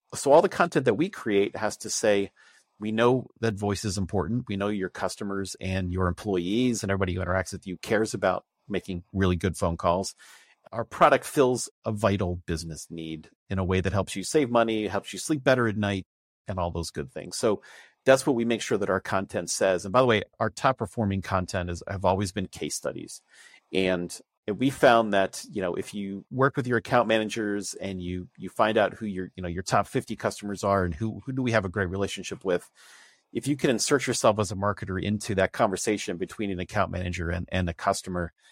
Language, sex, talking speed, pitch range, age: English, male, 225 wpm, 90-110 Hz, 40-59